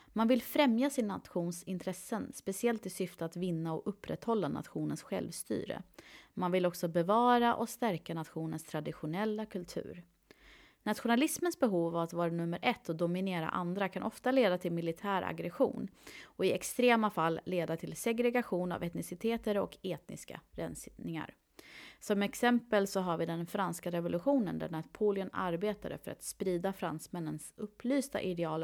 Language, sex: Swedish, female